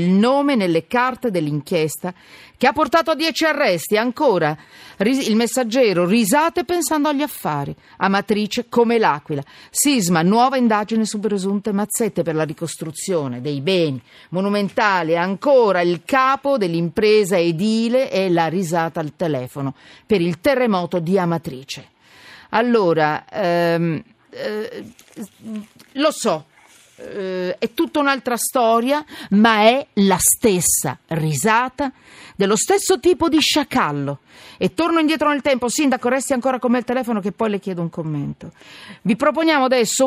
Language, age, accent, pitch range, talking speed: Italian, 40-59, native, 170-260 Hz, 130 wpm